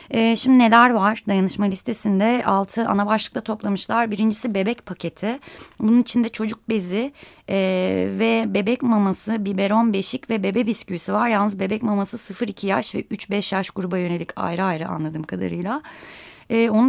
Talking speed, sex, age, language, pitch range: 140 wpm, female, 20-39, Turkish, 180-225 Hz